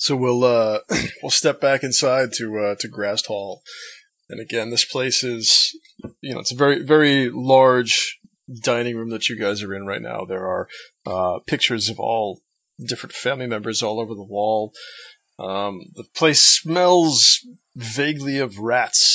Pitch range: 110-145 Hz